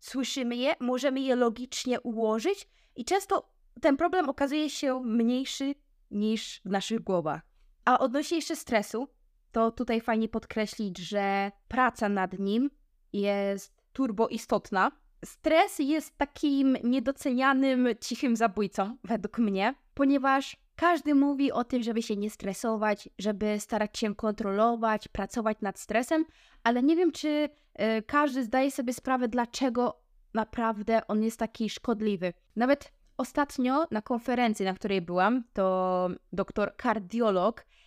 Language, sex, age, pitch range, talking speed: Polish, female, 20-39, 220-275 Hz, 125 wpm